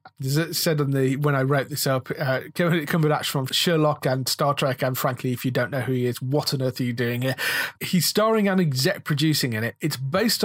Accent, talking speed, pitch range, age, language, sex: British, 225 wpm, 135-175 Hz, 40-59, English, male